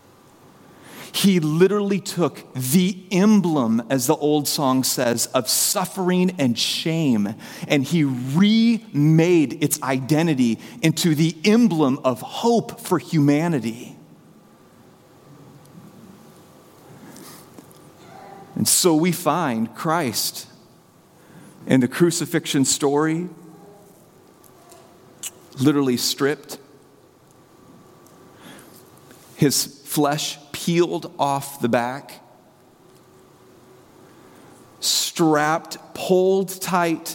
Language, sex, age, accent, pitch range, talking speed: English, male, 40-59, American, 135-175 Hz, 75 wpm